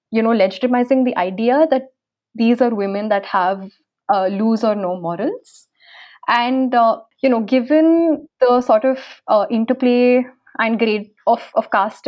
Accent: Indian